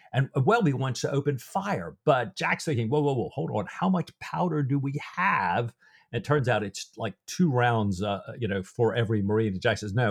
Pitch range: 105-140 Hz